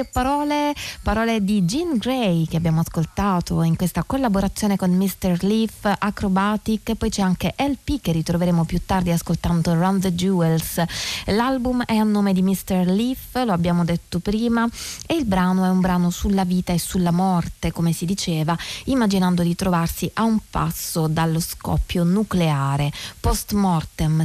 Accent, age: native, 20-39